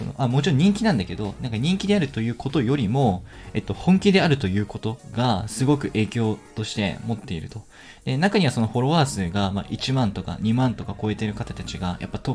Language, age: Japanese, 20-39